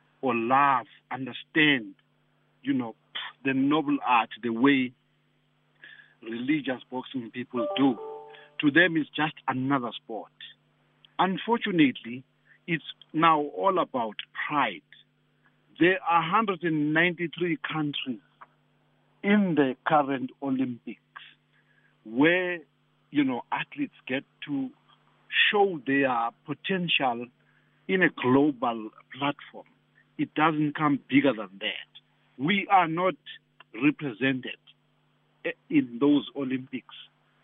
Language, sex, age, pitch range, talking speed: English, male, 50-69, 130-175 Hz, 95 wpm